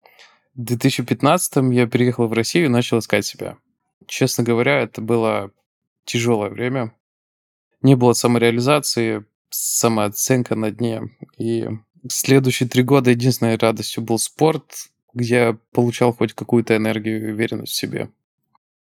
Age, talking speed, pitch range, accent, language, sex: 20-39, 125 wpm, 115-125 Hz, native, Russian, male